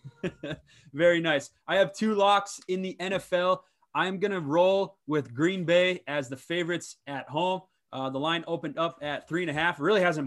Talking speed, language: 195 wpm, English